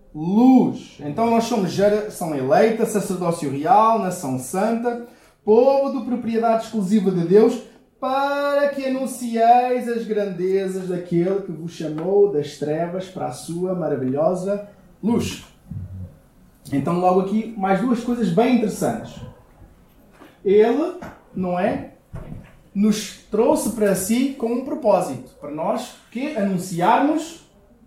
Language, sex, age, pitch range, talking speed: Portuguese, male, 20-39, 150-220 Hz, 115 wpm